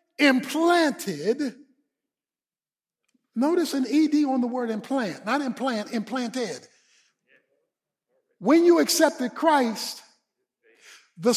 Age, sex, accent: 50-69, male, American